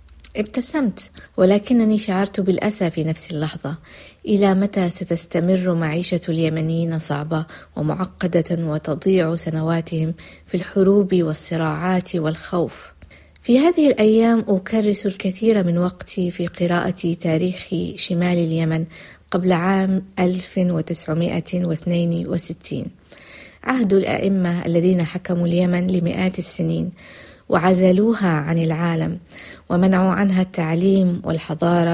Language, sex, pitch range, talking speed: Arabic, female, 165-190 Hz, 90 wpm